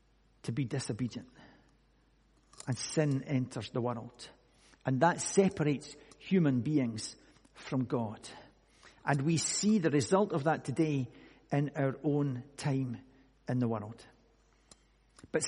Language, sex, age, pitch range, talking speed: English, male, 60-79, 150-205 Hz, 120 wpm